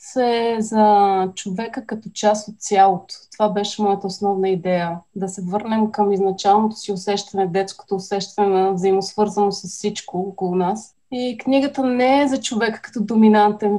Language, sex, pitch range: Bulgarian, female, 200-230 Hz